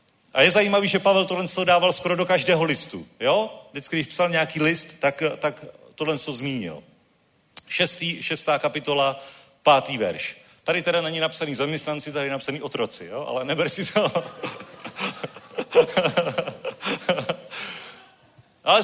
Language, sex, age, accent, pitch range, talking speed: Czech, male, 40-59, native, 120-165 Hz, 135 wpm